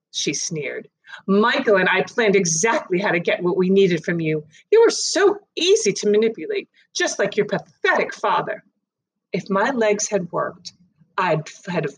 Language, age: English, 30-49